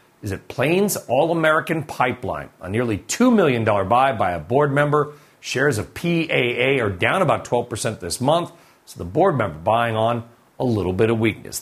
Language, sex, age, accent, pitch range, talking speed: English, male, 40-59, American, 120-160 Hz, 175 wpm